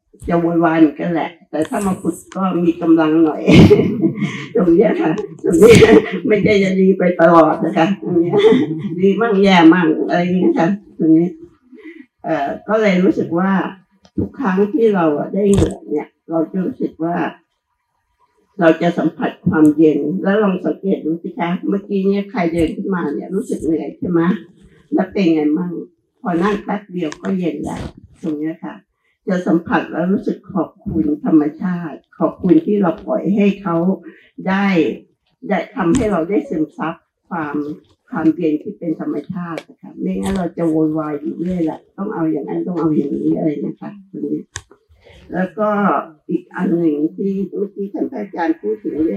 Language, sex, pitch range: Thai, female, 160-200 Hz